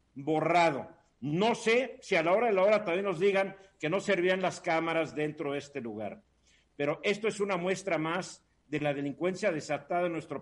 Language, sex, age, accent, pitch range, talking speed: Spanish, male, 50-69, Mexican, 145-195 Hz, 195 wpm